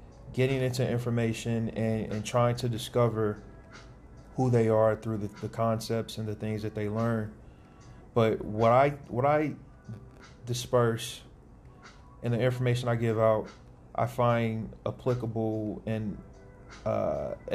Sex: male